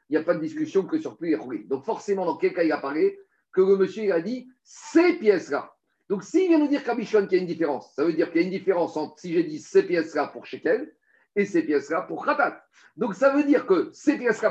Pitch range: 160-250 Hz